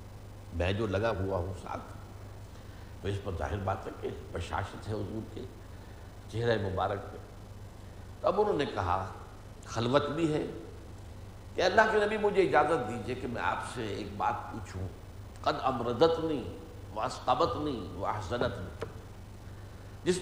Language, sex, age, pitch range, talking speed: Urdu, male, 60-79, 95-120 Hz, 145 wpm